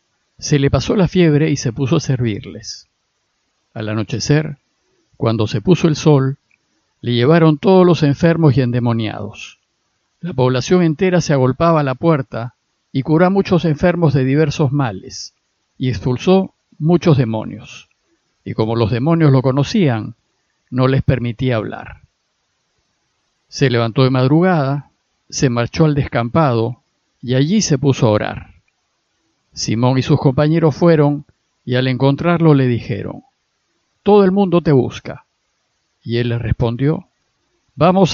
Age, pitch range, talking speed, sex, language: 50-69, 125-160 Hz, 135 wpm, male, Spanish